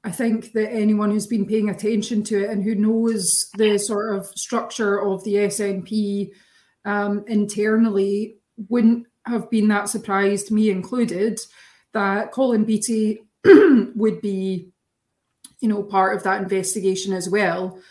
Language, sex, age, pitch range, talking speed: English, female, 20-39, 195-220 Hz, 135 wpm